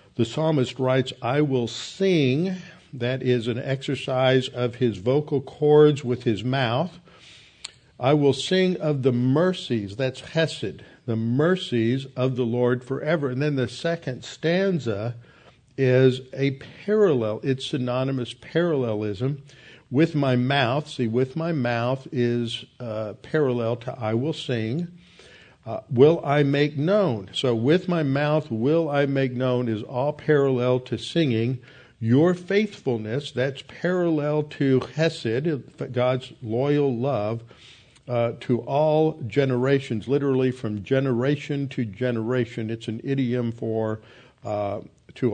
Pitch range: 120-145 Hz